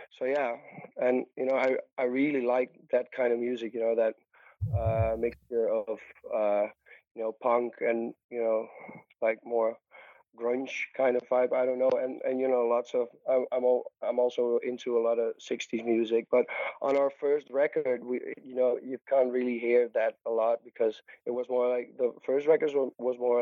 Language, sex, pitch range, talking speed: English, male, 115-125 Hz, 195 wpm